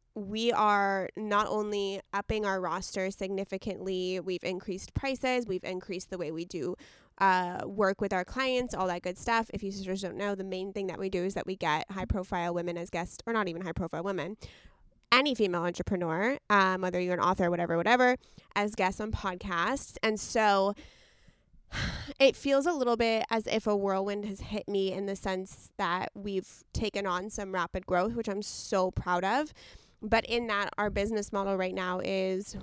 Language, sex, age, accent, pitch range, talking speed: English, female, 20-39, American, 185-215 Hz, 190 wpm